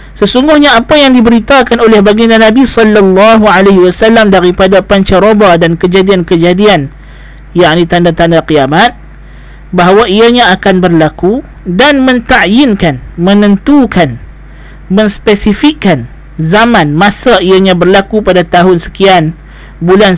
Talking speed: 100 wpm